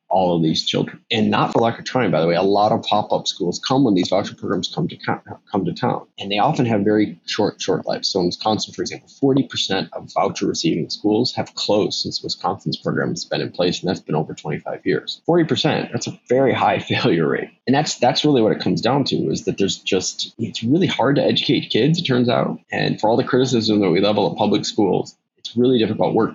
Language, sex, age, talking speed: English, male, 30-49, 240 wpm